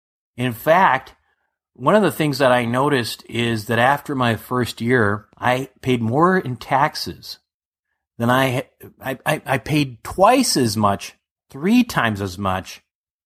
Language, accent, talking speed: English, American, 145 wpm